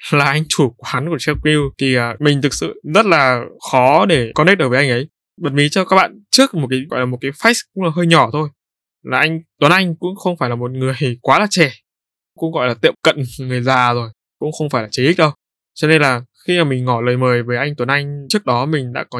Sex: male